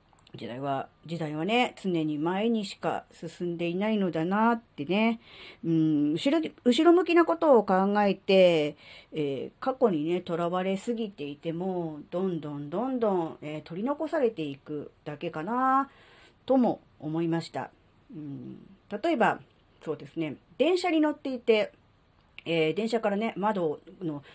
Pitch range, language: 155-225 Hz, Japanese